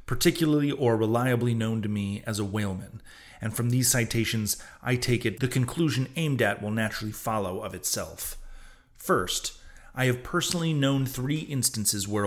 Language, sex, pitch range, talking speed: English, male, 110-135 Hz, 160 wpm